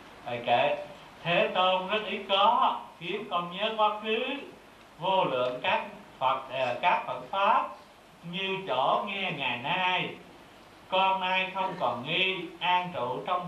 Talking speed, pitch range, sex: 145 wpm, 160-200 Hz, male